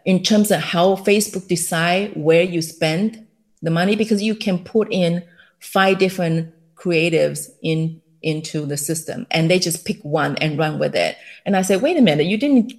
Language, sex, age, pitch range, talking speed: English, female, 30-49, 165-225 Hz, 190 wpm